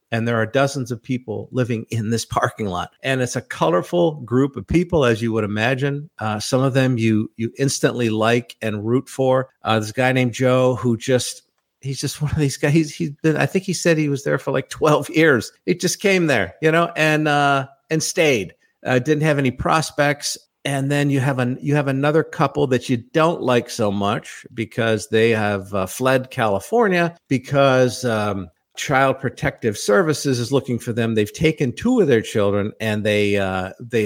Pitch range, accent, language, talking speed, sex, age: 115-150 Hz, American, English, 200 wpm, male, 50-69